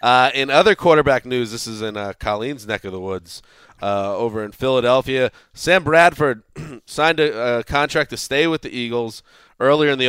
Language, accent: English, American